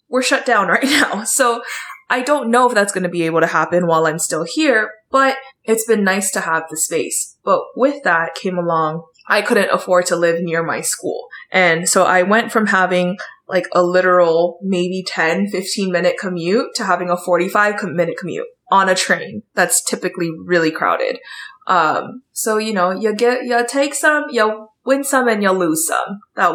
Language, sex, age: English, female, 20-39